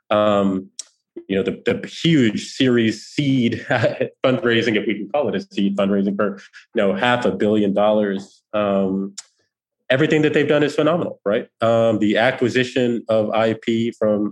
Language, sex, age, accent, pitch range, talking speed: English, male, 20-39, American, 105-120 Hz, 160 wpm